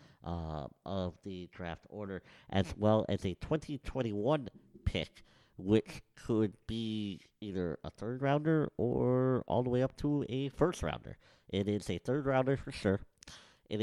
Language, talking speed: English, 150 wpm